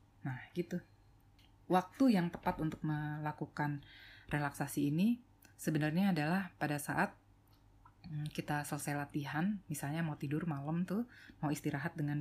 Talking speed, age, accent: 120 wpm, 20-39, native